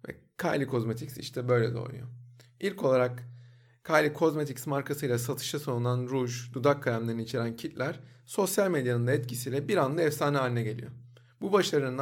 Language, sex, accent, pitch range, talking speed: Turkish, male, native, 120-165 Hz, 140 wpm